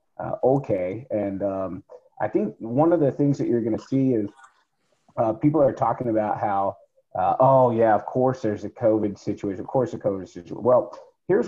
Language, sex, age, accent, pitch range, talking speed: English, male, 30-49, American, 105-130 Hz, 200 wpm